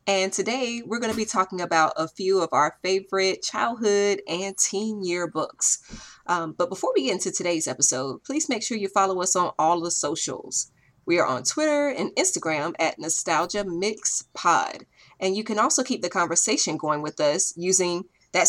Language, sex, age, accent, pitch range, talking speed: English, female, 30-49, American, 170-225 Hz, 190 wpm